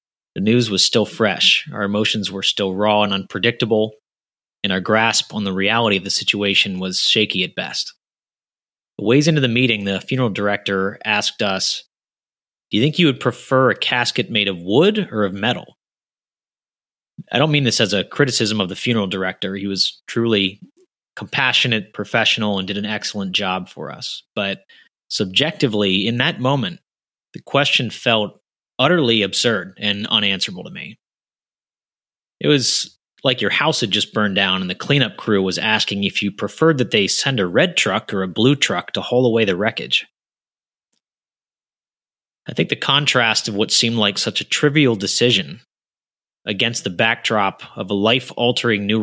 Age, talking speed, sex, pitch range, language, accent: 30-49, 170 wpm, male, 100-125 Hz, English, American